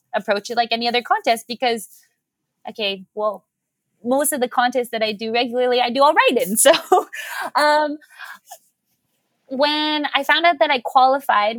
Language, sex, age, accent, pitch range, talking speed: English, female, 20-39, American, 200-245 Hz, 160 wpm